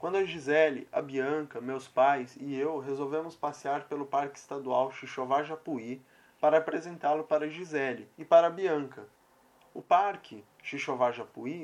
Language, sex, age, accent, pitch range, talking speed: Portuguese, male, 20-39, Brazilian, 145-175 Hz, 135 wpm